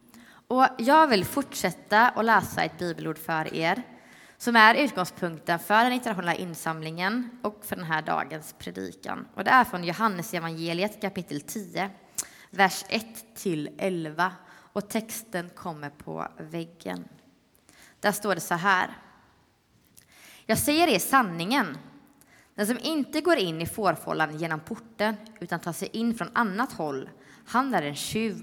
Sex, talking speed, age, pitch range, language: female, 145 wpm, 20-39, 170-230 Hz, English